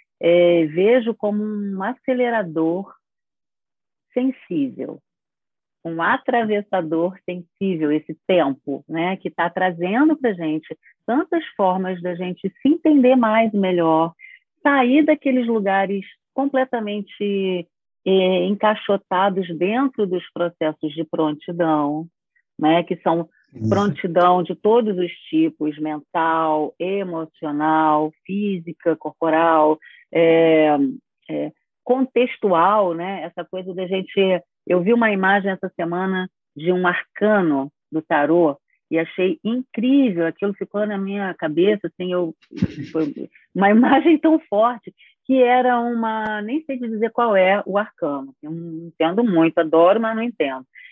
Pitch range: 165-225 Hz